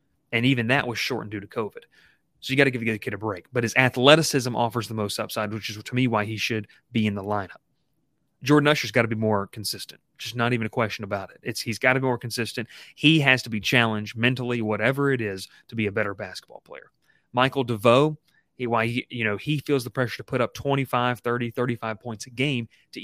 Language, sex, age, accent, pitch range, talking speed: English, male, 30-49, American, 110-135 Hz, 240 wpm